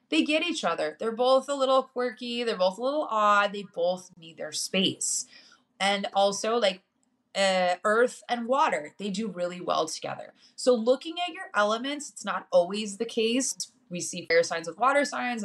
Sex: female